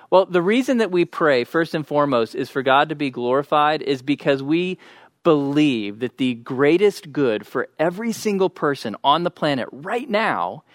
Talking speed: 180 wpm